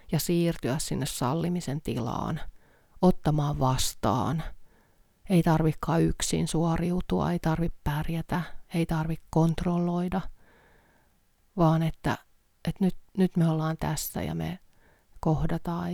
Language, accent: Finnish, native